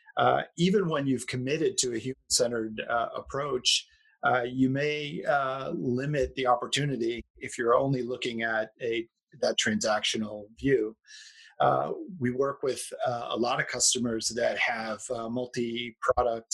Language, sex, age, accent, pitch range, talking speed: English, male, 40-59, American, 115-135 Hz, 150 wpm